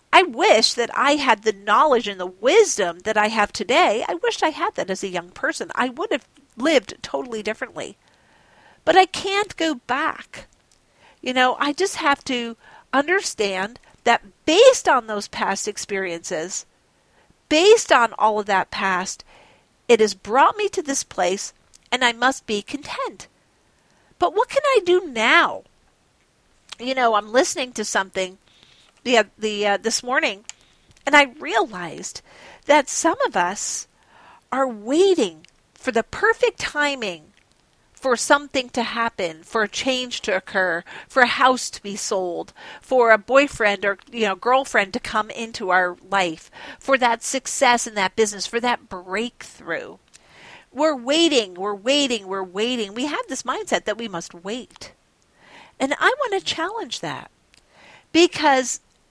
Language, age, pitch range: English, 50-69, 205-290 Hz